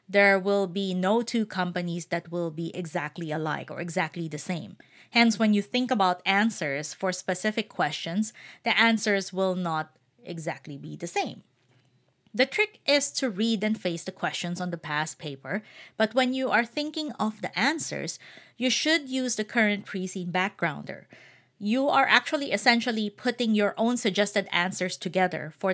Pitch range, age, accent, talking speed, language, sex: 175-235 Hz, 30-49, Filipino, 170 wpm, English, female